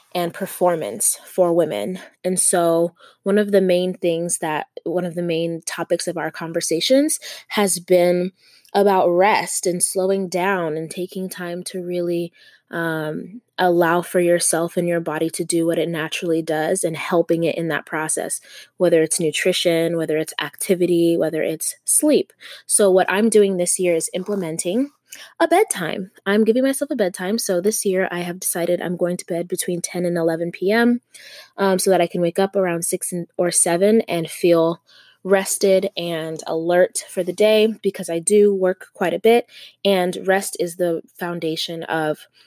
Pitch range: 170-195 Hz